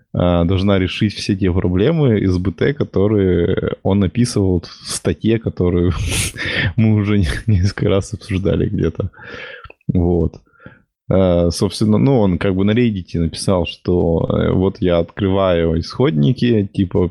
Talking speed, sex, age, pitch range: 120 wpm, male, 20-39, 85-105 Hz